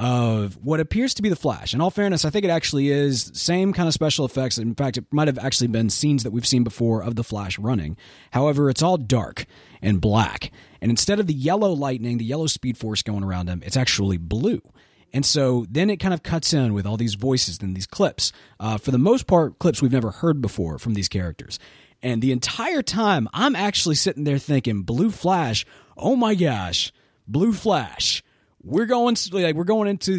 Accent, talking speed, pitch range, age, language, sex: American, 220 wpm, 115-175 Hz, 30-49, English, male